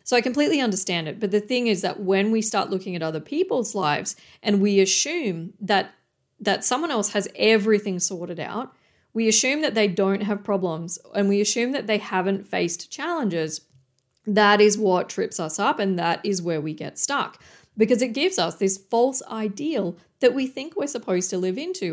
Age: 40-59